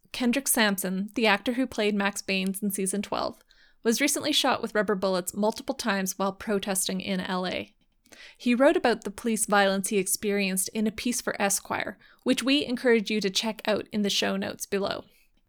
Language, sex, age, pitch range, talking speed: English, female, 20-39, 200-235 Hz, 185 wpm